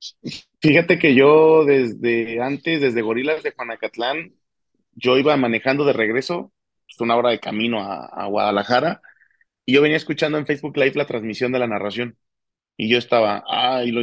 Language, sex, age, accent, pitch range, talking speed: Spanish, male, 30-49, Mexican, 120-160 Hz, 165 wpm